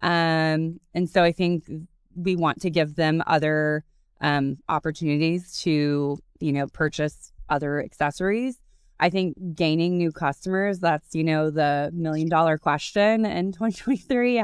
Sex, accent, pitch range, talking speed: female, American, 145-175 Hz, 135 wpm